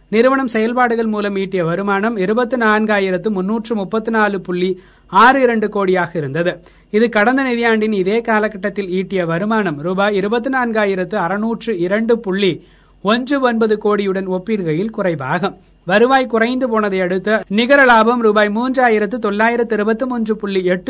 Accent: native